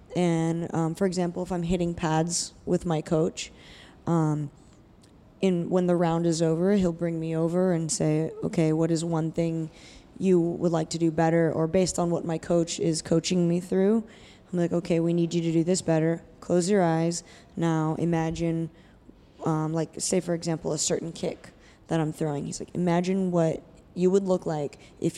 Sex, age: female, 10-29